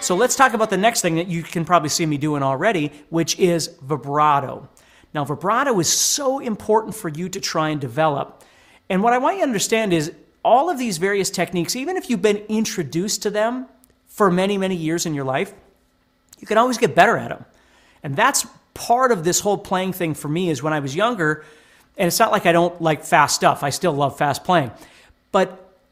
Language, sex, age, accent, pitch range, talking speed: English, male, 40-59, American, 150-215 Hz, 215 wpm